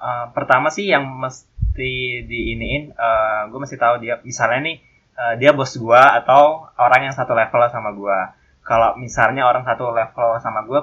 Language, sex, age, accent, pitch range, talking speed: Indonesian, male, 10-29, native, 115-140 Hz, 170 wpm